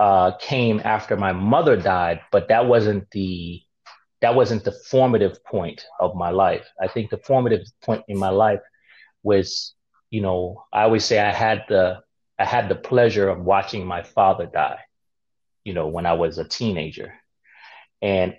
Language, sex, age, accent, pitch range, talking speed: English, male, 30-49, American, 95-115 Hz, 170 wpm